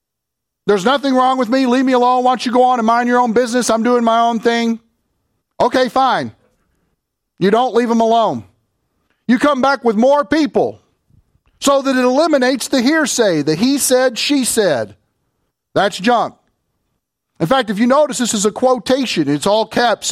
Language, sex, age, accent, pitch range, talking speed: English, male, 40-59, American, 200-265 Hz, 180 wpm